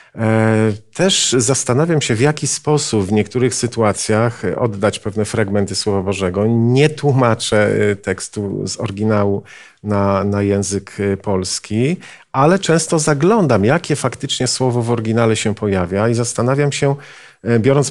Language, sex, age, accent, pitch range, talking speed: Polish, male, 40-59, native, 105-140 Hz, 125 wpm